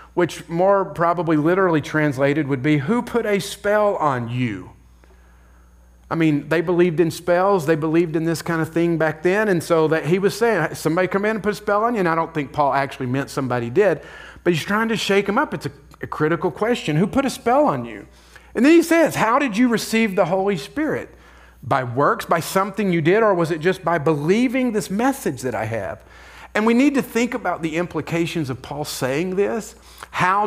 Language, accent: English, American